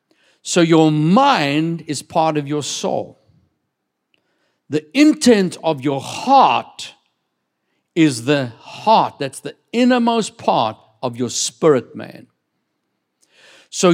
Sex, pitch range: male, 145-210 Hz